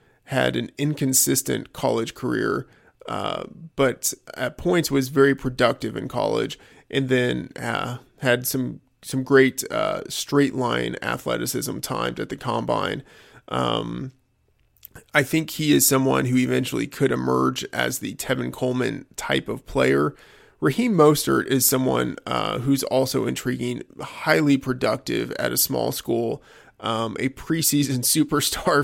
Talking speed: 135 wpm